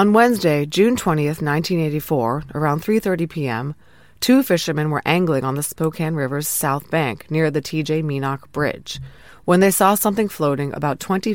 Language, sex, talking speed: English, female, 160 wpm